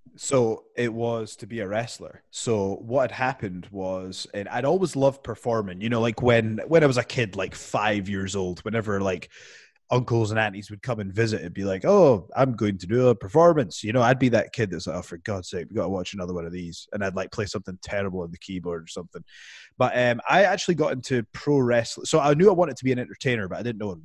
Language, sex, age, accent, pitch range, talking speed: English, male, 20-39, British, 100-130 Hz, 250 wpm